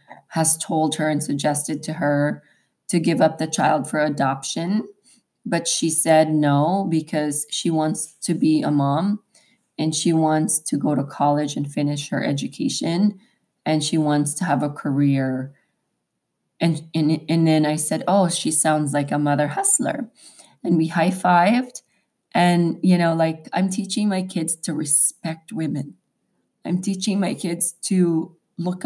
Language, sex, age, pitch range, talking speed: English, female, 20-39, 160-210 Hz, 160 wpm